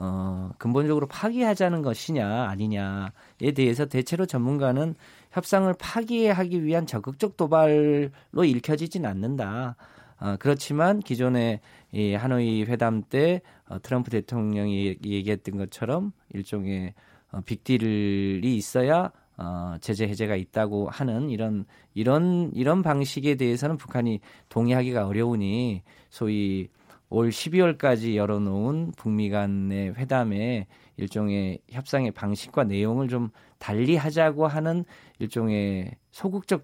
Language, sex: Korean, male